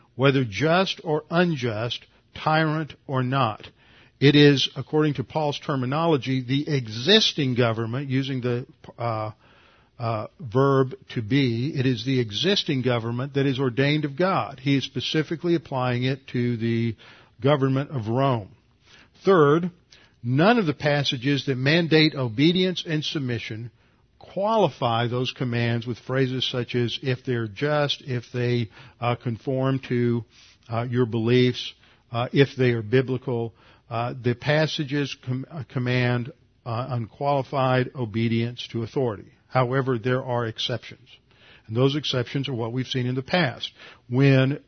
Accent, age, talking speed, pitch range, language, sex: American, 50-69, 135 wpm, 120-140 Hz, English, male